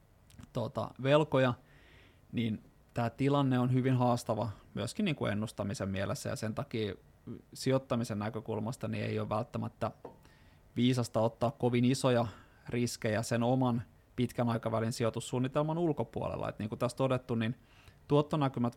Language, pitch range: Finnish, 110-125 Hz